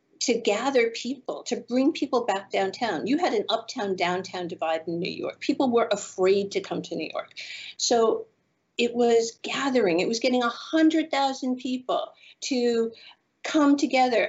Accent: American